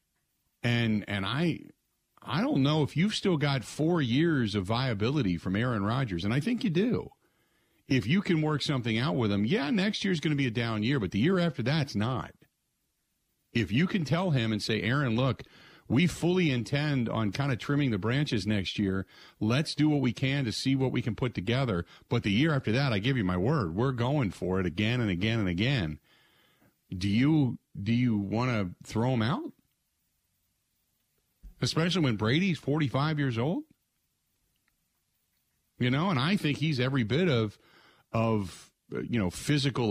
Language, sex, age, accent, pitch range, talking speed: English, male, 40-59, American, 105-145 Hz, 185 wpm